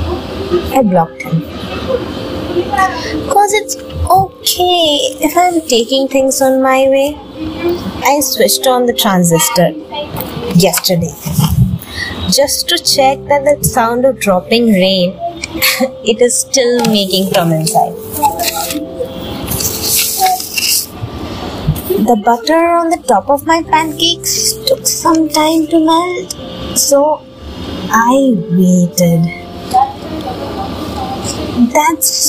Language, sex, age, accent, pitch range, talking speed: English, female, 20-39, Indian, 190-295 Hz, 95 wpm